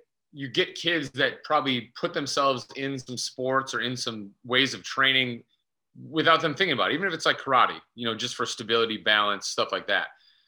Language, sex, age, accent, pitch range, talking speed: English, male, 30-49, American, 110-135 Hz, 200 wpm